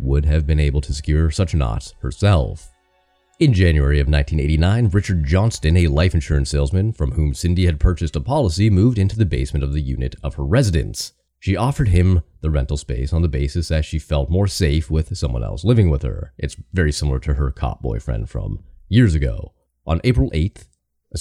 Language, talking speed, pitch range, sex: English, 200 wpm, 75-95 Hz, male